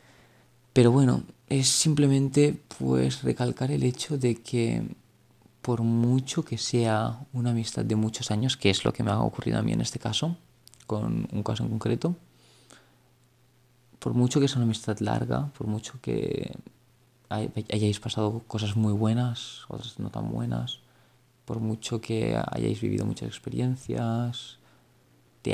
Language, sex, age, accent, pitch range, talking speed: Spanish, male, 20-39, Spanish, 110-125 Hz, 150 wpm